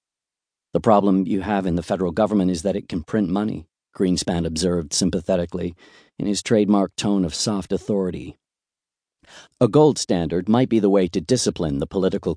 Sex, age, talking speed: male, 40-59, 170 wpm